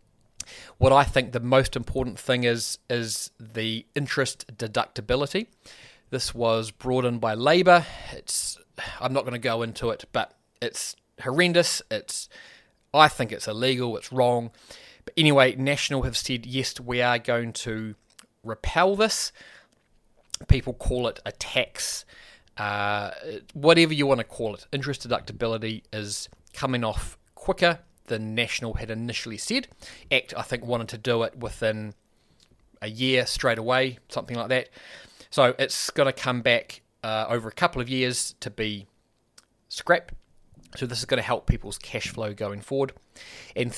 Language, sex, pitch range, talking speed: English, male, 110-135 Hz, 155 wpm